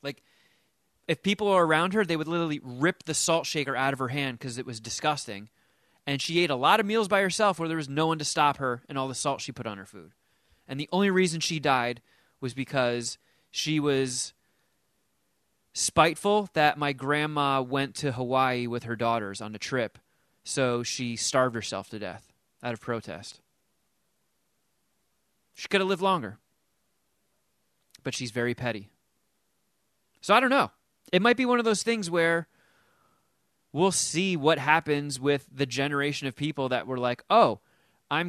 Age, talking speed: 30-49, 175 wpm